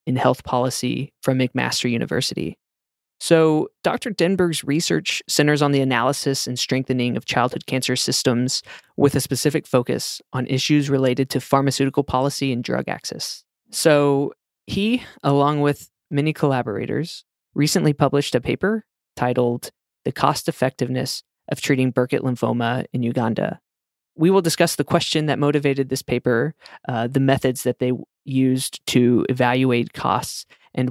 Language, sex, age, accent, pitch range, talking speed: English, male, 20-39, American, 125-150 Hz, 140 wpm